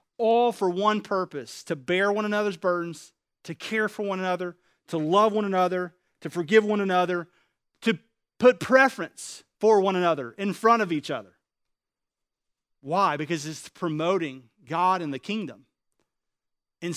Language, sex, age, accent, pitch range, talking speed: English, male, 40-59, American, 175-220 Hz, 150 wpm